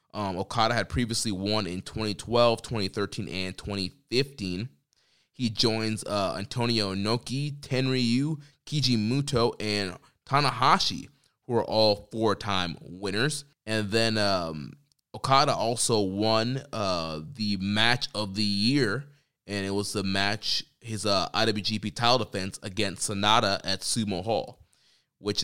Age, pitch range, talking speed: 20-39, 100-120 Hz, 125 wpm